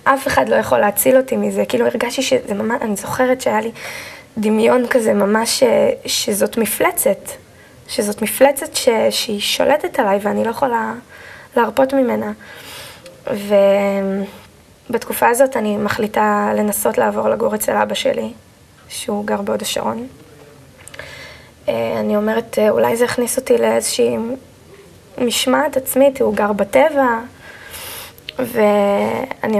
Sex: female